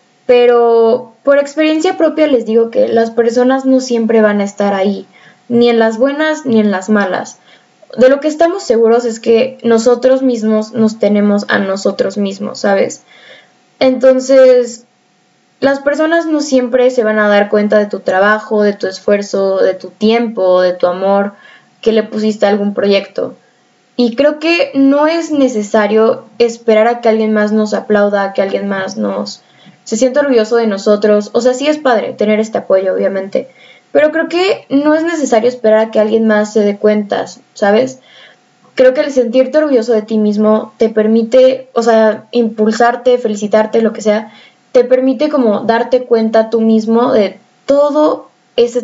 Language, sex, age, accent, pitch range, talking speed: Spanish, female, 10-29, Mexican, 210-255 Hz, 170 wpm